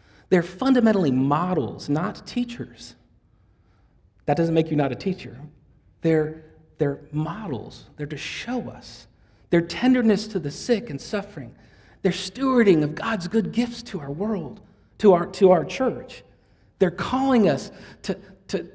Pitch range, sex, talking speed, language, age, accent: 130-215 Hz, male, 140 wpm, English, 40-59, American